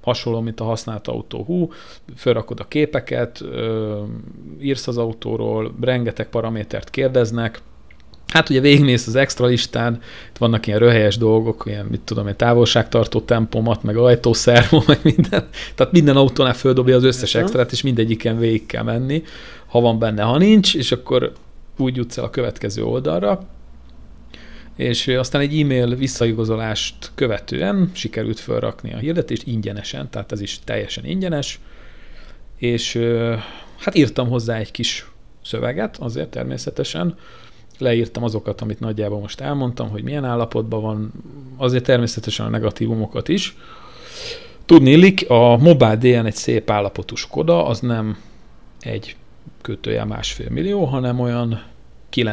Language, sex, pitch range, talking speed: Hungarian, male, 110-130 Hz, 135 wpm